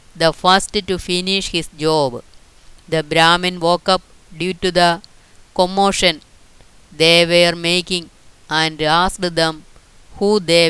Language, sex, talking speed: Malayalam, female, 125 wpm